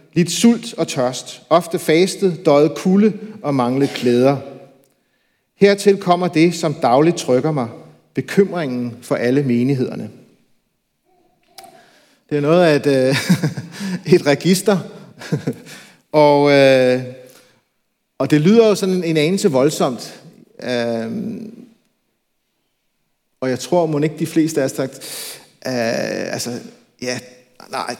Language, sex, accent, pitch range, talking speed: Danish, male, native, 140-190 Hz, 110 wpm